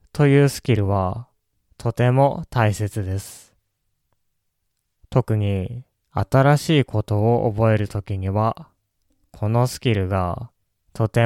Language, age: Japanese, 20-39